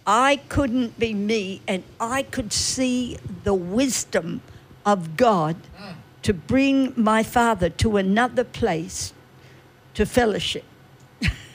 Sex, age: female, 60-79